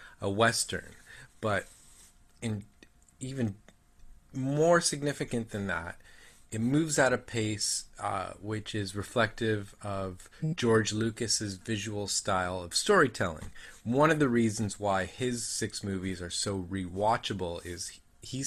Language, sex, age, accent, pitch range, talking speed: English, male, 30-49, American, 100-120 Hz, 125 wpm